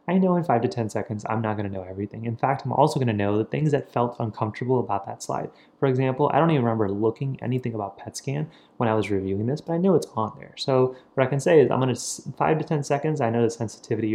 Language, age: English, 20-39